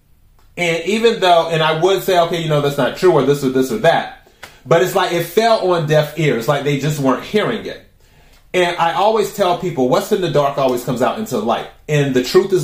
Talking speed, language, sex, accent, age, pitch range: 245 wpm, English, male, American, 30-49, 125-175 Hz